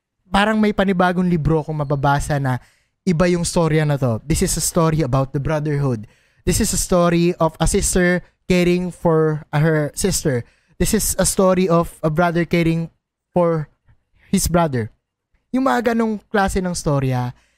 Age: 20-39